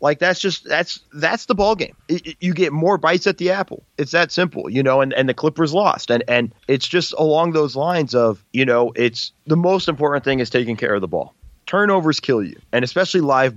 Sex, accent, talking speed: male, American, 240 wpm